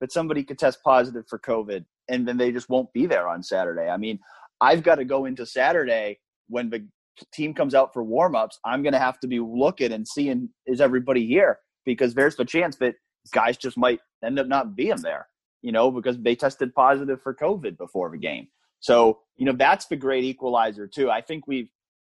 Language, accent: English, American